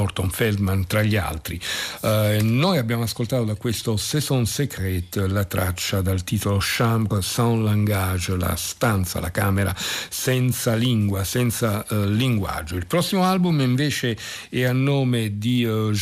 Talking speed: 140 wpm